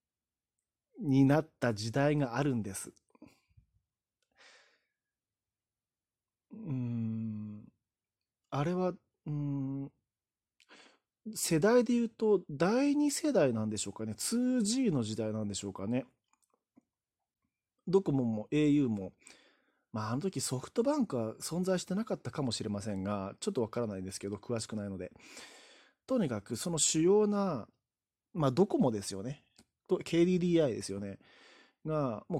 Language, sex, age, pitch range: Japanese, male, 40-59, 115-175 Hz